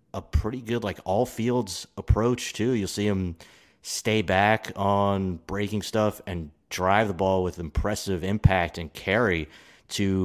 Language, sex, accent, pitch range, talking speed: English, male, American, 90-105 Hz, 145 wpm